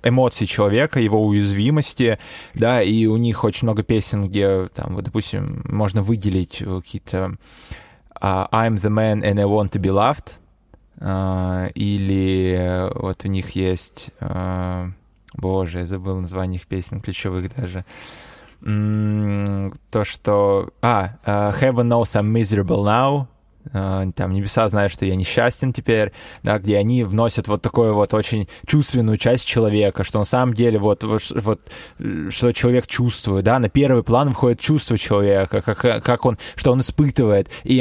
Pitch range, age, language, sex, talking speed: 100-125 Hz, 20-39, Russian, male, 150 wpm